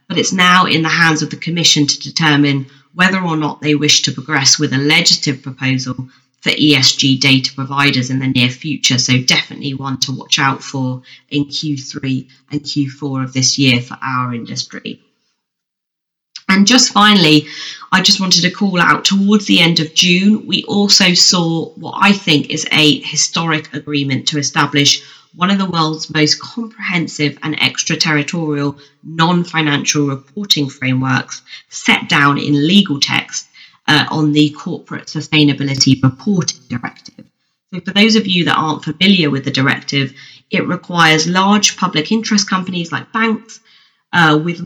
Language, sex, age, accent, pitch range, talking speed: English, female, 30-49, British, 140-180 Hz, 155 wpm